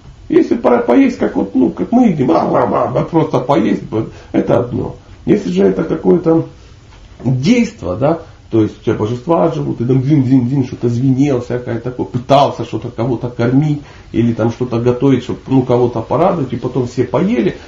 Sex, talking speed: male, 175 wpm